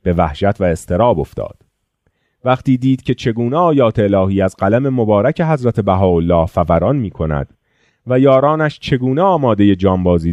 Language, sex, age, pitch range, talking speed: Persian, male, 30-49, 95-140 Hz, 145 wpm